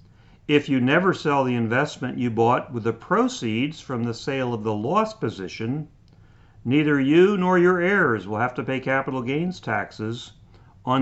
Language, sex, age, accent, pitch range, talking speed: English, male, 50-69, American, 110-150 Hz, 170 wpm